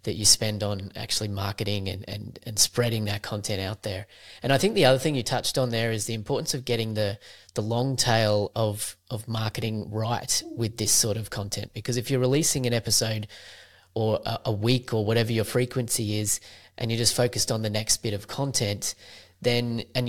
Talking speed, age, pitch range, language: 205 wpm, 20-39, 105-125 Hz, English